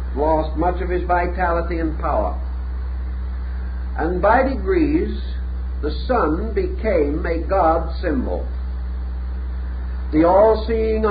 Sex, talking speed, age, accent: male, 95 wpm, 50-69, American